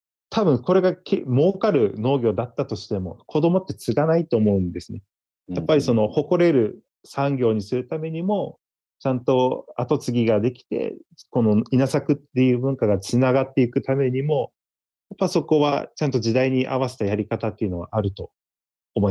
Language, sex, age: Japanese, male, 40-59